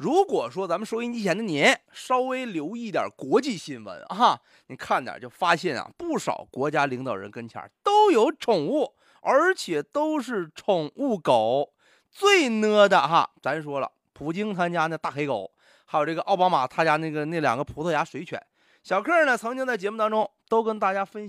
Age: 30-49